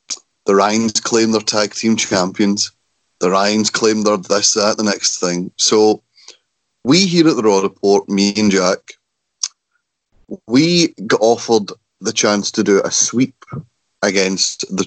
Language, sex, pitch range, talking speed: English, male, 100-115 Hz, 150 wpm